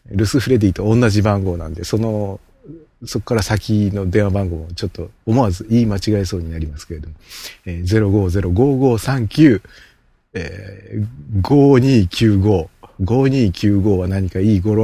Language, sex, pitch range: Japanese, male, 95-115 Hz